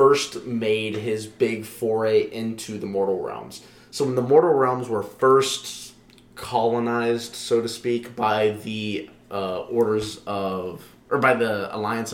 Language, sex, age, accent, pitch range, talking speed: English, male, 20-39, American, 110-125 Hz, 145 wpm